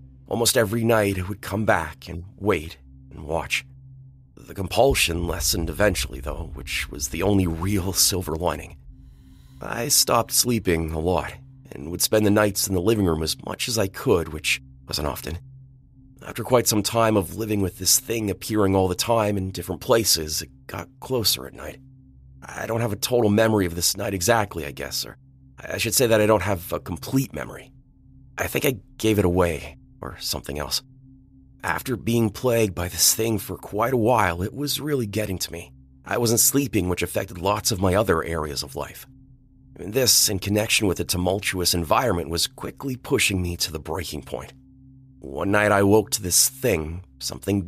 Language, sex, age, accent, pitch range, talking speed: English, male, 30-49, American, 80-110 Hz, 190 wpm